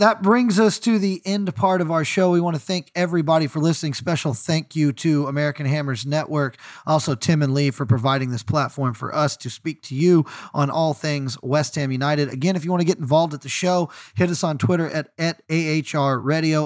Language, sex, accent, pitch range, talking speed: English, male, American, 140-170 Hz, 225 wpm